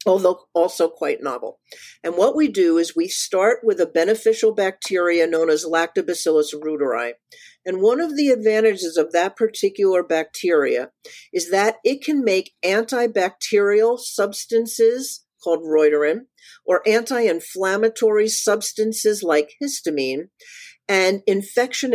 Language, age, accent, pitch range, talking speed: English, 50-69, American, 170-265 Hz, 120 wpm